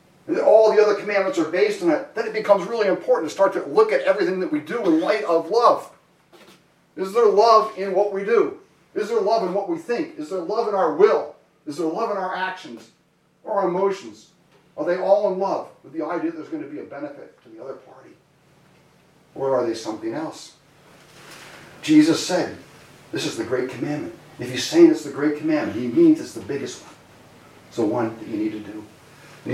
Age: 40-59